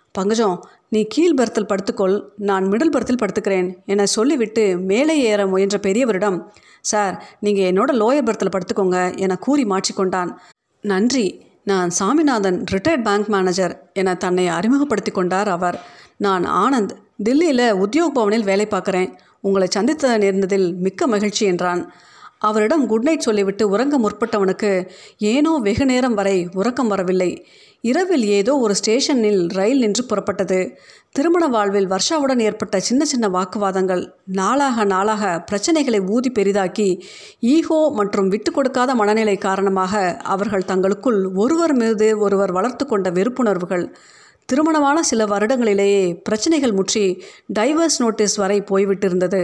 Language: Tamil